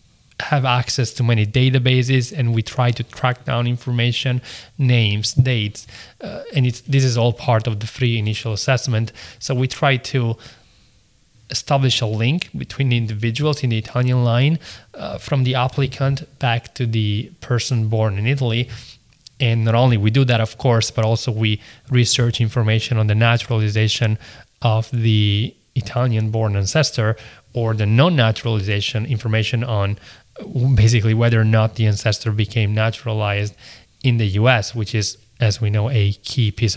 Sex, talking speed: male, 155 wpm